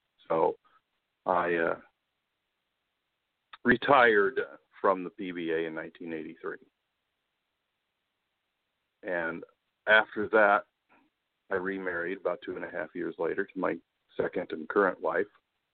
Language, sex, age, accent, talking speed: English, male, 50-69, American, 105 wpm